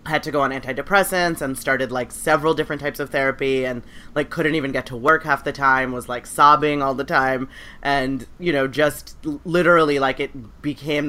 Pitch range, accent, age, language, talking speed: 130-150 Hz, American, 30-49, English, 200 wpm